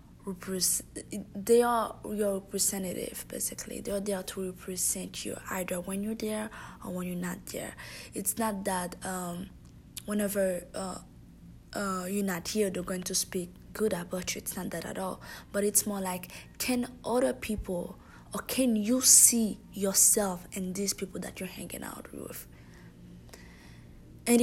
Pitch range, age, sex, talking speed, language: 180-210 Hz, 20-39, female, 155 wpm, English